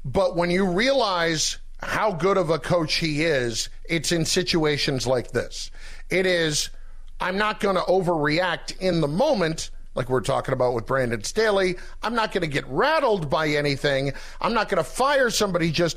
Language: English